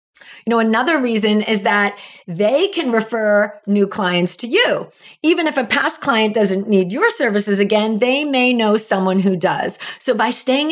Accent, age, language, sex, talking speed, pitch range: American, 40-59, English, female, 180 wpm, 205-285 Hz